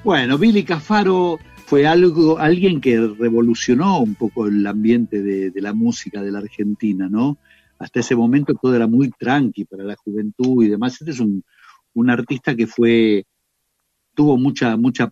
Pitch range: 110-150 Hz